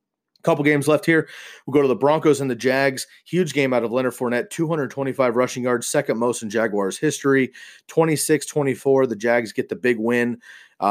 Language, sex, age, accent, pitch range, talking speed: English, male, 30-49, American, 110-135 Hz, 185 wpm